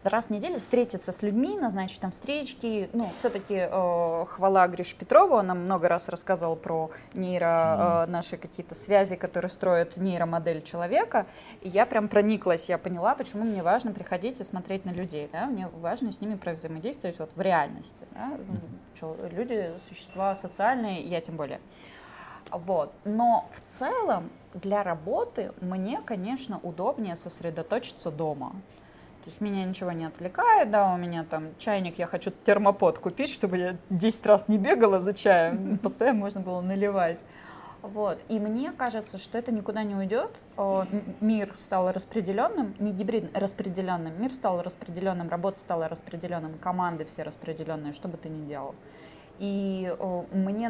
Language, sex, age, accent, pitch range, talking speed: Russian, female, 20-39, native, 175-210 Hz, 150 wpm